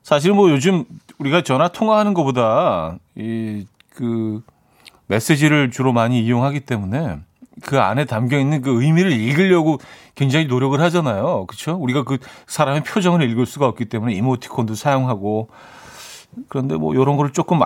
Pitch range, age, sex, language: 115-155 Hz, 40-59, male, Korean